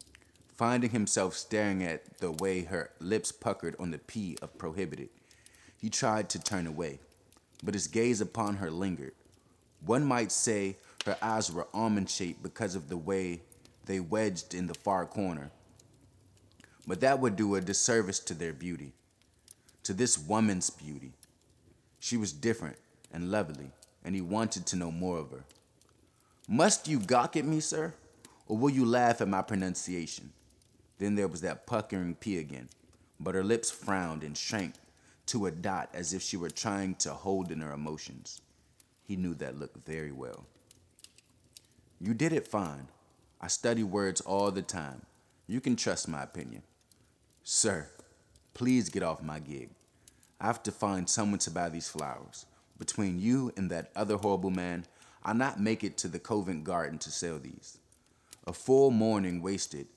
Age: 20-39